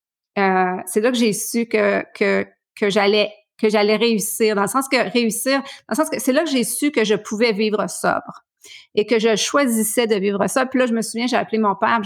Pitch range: 200-235 Hz